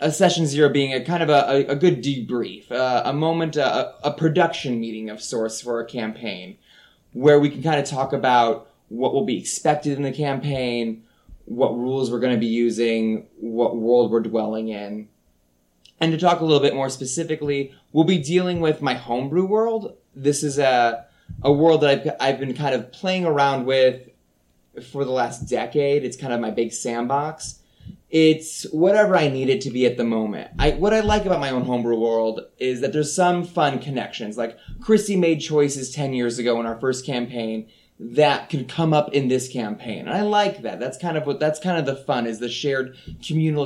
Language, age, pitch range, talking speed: English, 20-39, 120-155 Hz, 205 wpm